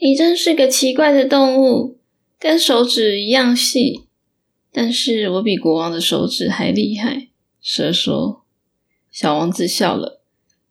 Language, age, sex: Chinese, 10-29, female